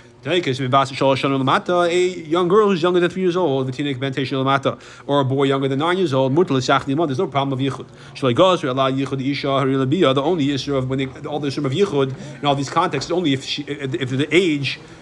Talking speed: 165 wpm